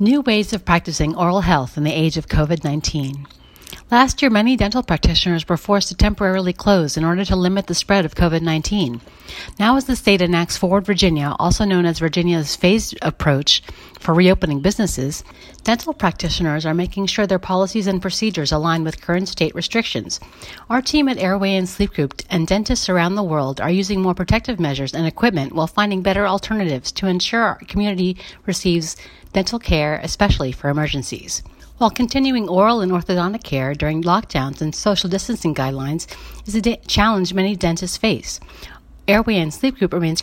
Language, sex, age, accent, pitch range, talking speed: English, female, 40-59, American, 160-205 Hz, 170 wpm